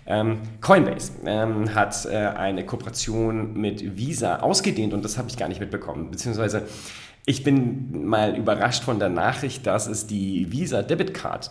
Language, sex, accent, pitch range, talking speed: German, male, German, 105-130 Hz, 150 wpm